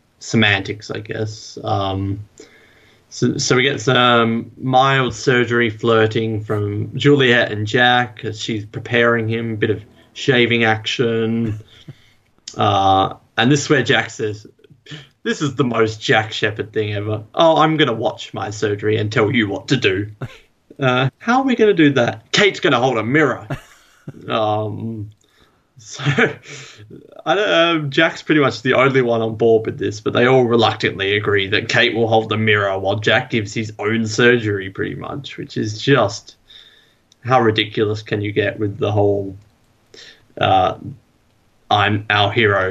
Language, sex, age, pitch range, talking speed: English, male, 20-39, 105-130 Hz, 160 wpm